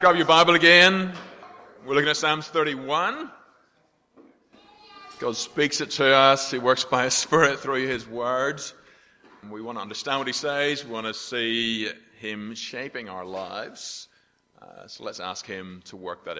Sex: male